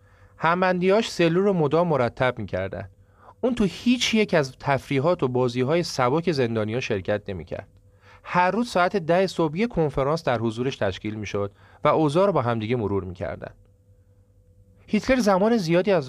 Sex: male